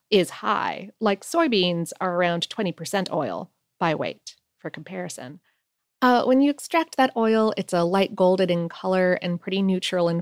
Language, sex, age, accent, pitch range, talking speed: English, female, 30-49, American, 180-240 Hz, 165 wpm